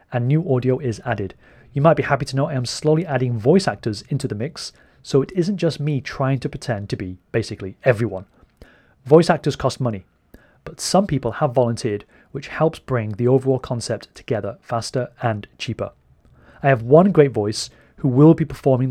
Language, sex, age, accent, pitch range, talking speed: English, male, 30-49, British, 115-145 Hz, 190 wpm